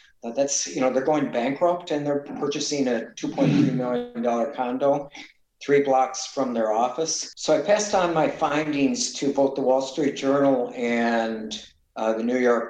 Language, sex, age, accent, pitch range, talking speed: English, male, 60-79, American, 115-135 Hz, 165 wpm